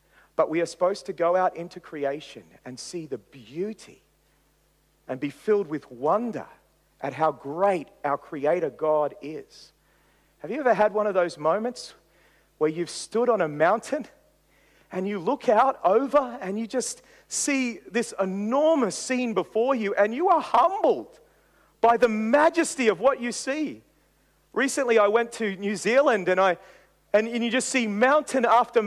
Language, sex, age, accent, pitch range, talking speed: English, male, 40-59, Australian, 195-260 Hz, 160 wpm